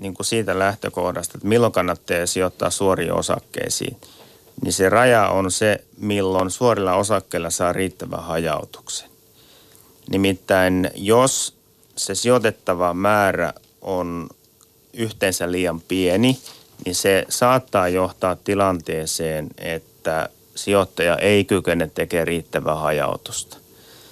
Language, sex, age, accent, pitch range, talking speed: Finnish, male, 30-49, native, 85-100 Hz, 100 wpm